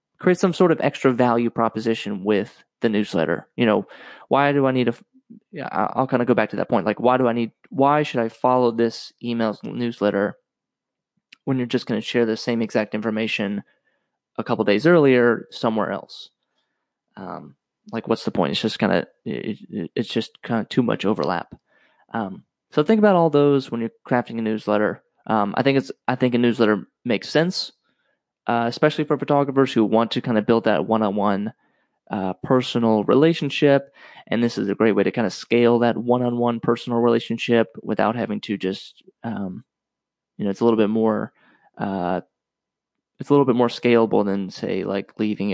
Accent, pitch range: American, 110-130 Hz